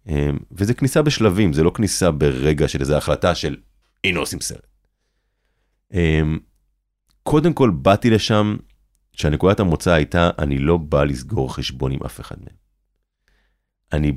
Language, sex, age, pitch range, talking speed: Hebrew, male, 30-49, 75-120 Hz, 135 wpm